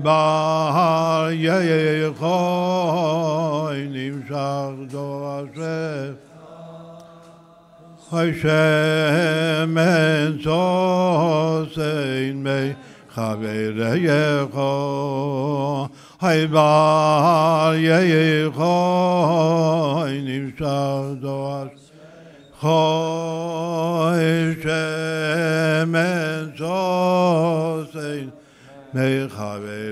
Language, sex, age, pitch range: Hebrew, male, 60-79, 140-165 Hz